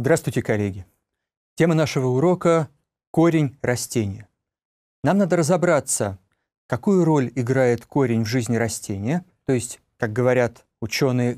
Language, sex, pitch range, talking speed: Russian, male, 120-160 Hz, 115 wpm